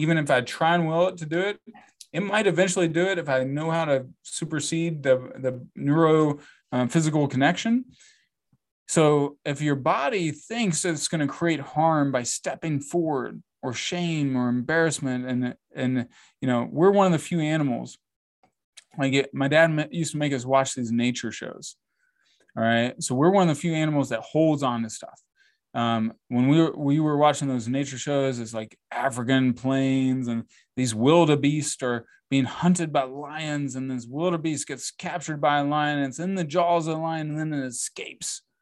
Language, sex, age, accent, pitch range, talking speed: English, male, 20-39, American, 135-190 Hz, 190 wpm